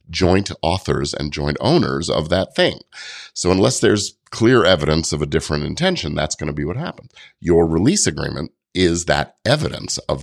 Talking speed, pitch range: 175 wpm, 75-100 Hz